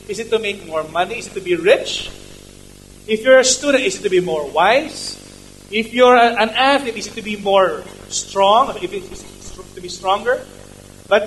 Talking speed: 195 wpm